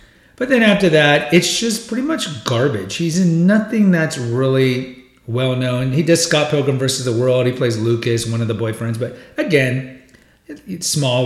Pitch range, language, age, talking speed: 115-160 Hz, English, 40-59, 170 wpm